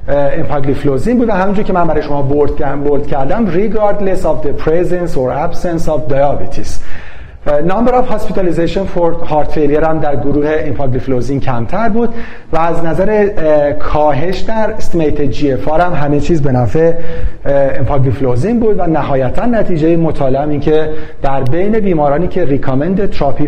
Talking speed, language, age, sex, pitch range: 130 wpm, Persian, 40-59, male, 135-175 Hz